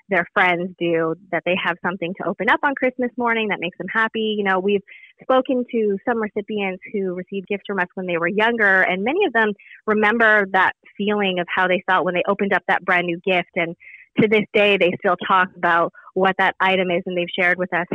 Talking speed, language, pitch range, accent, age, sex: 230 wpm, English, 180-215 Hz, American, 20-39, female